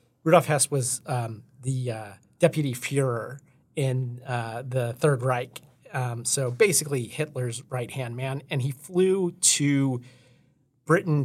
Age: 40-59